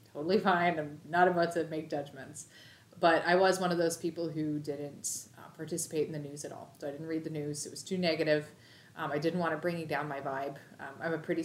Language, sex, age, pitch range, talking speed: English, female, 30-49, 145-175 Hz, 245 wpm